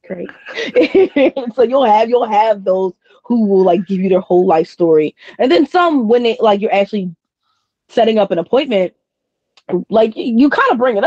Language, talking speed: English, 185 wpm